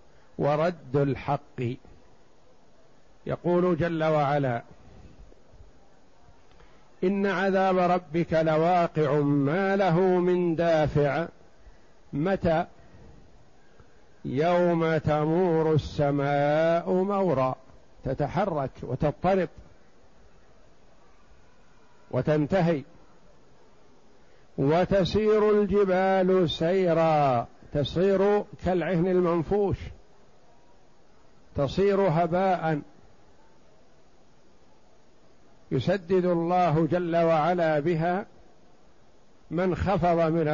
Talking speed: 55 wpm